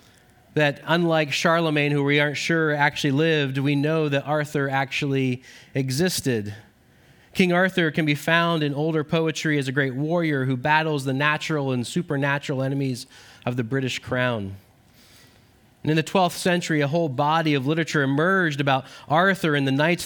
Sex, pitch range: male, 130-160 Hz